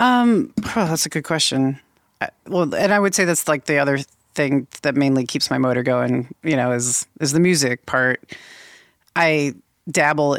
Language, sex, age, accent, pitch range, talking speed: English, female, 30-49, American, 130-155 Hz, 175 wpm